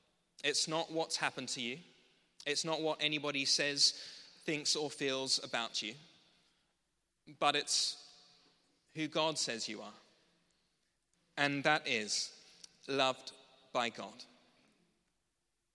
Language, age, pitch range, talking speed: English, 30-49, 125-145 Hz, 110 wpm